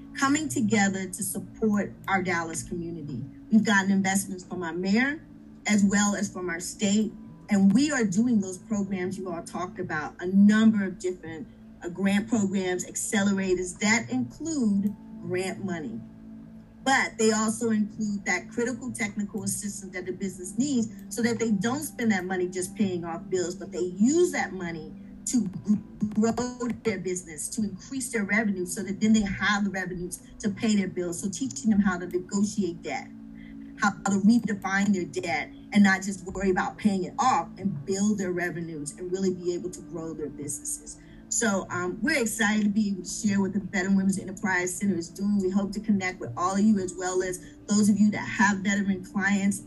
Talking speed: 185 wpm